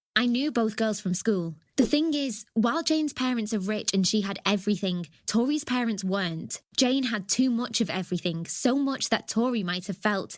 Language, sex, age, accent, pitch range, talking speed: English, female, 20-39, British, 195-235 Hz, 195 wpm